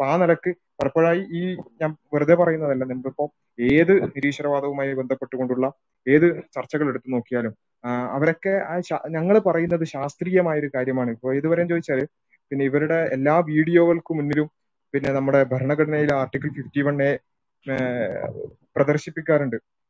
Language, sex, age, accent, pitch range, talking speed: Malayalam, male, 20-39, native, 135-165 Hz, 115 wpm